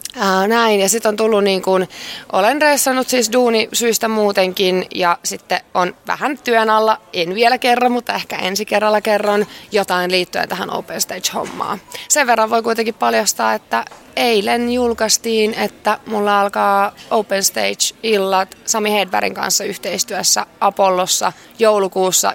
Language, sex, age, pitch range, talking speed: Finnish, female, 20-39, 180-215 Hz, 135 wpm